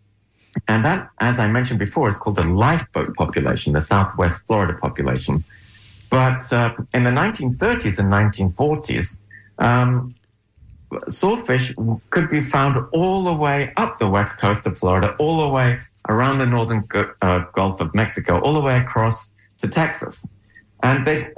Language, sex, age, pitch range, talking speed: English, male, 50-69, 100-125 Hz, 150 wpm